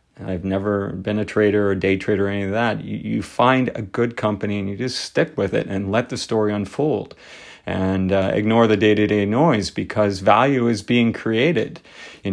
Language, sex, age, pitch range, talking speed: English, male, 40-59, 100-115 Hz, 220 wpm